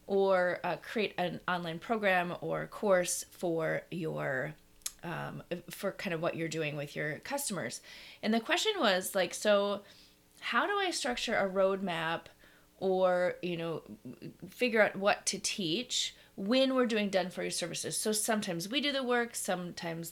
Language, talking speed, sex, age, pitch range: English, 160 wpm, female, 30-49, 180-220 Hz